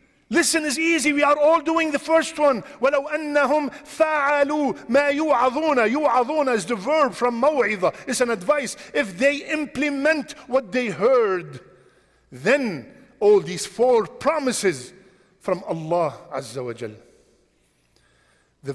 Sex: male